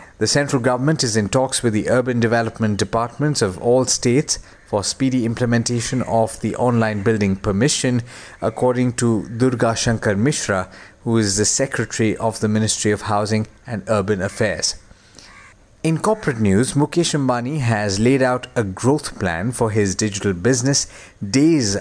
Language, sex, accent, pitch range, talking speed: English, male, Indian, 110-130 Hz, 150 wpm